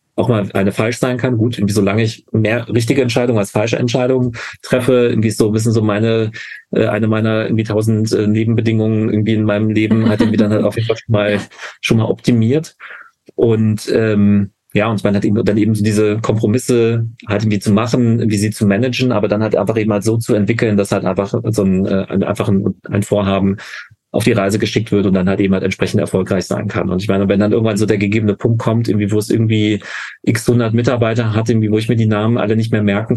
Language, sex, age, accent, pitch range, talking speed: German, male, 40-59, German, 105-115 Hz, 225 wpm